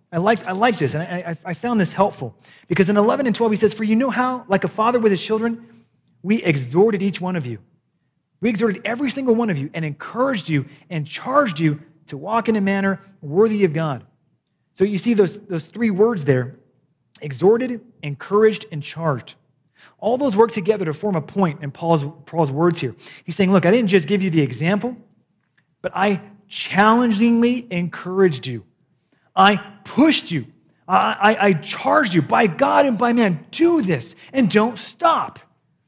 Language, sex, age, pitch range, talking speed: English, male, 30-49, 165-235 Hz, 185 wpm